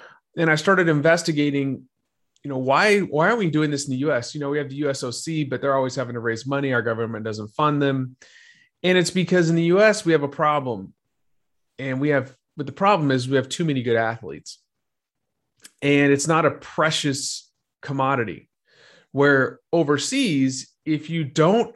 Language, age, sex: English, 30-49, male